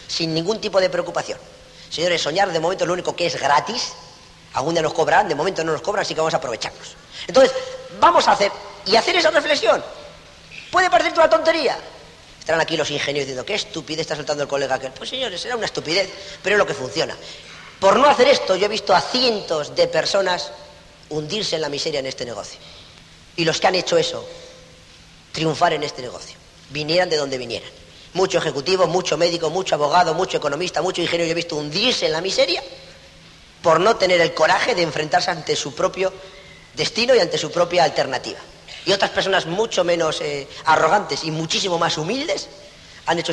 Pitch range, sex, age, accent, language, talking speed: 155-215 Hz, female, 40-59, Spanish, Spanish, 195 wpm